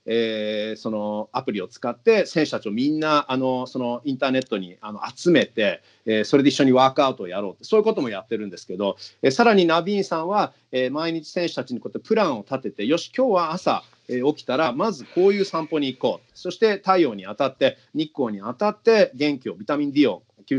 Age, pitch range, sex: 40-59, 120-180 Hz, male